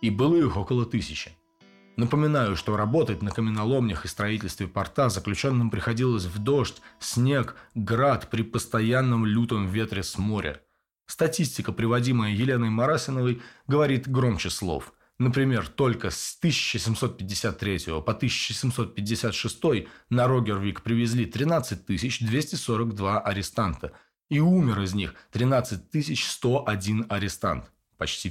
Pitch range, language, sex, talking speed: 100-125 Hz, Russian, male, 105 wpm